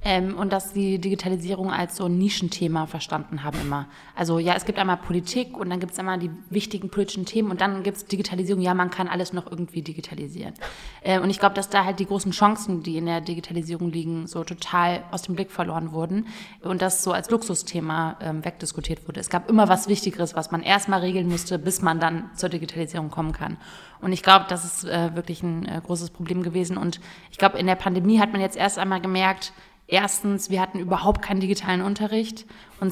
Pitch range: 175-195 Hz